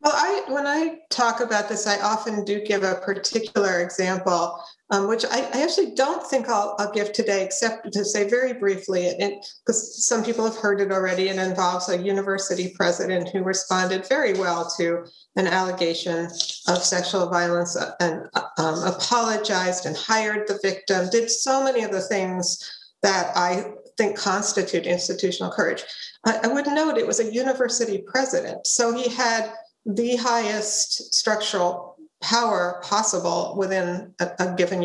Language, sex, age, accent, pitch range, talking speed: English, female, 50-69, American, 180-235 Hz, 155 wpm